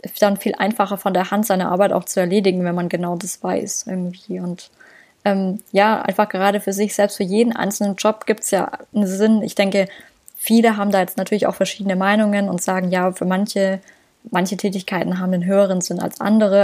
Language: German